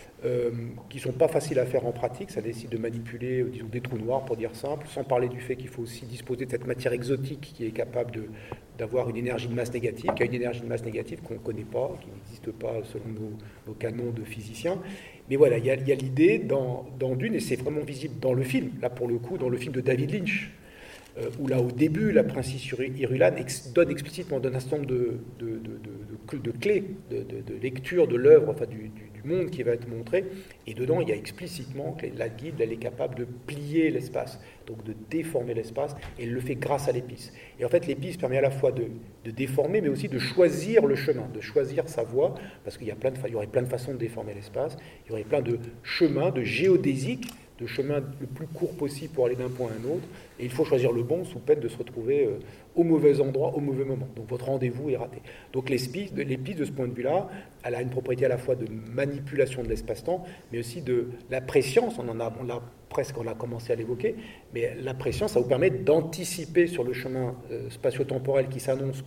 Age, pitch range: 40-59, 120-145 Hz